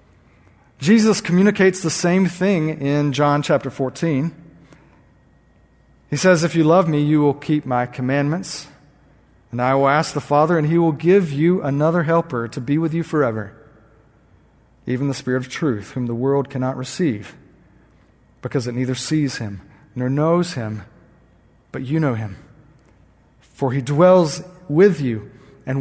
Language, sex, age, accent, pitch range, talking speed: English, male, 40-59, American, 140-180 Hz, 155 wpm